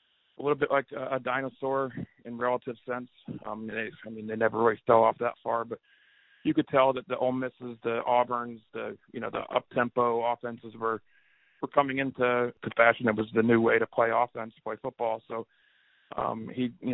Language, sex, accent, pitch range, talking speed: English, male, American, 115-125 Hz, 200 wpm